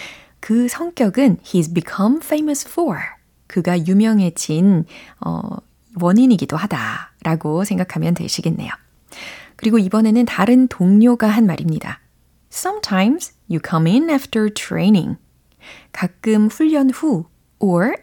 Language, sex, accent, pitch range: Korean, female, native, 170-260 Hz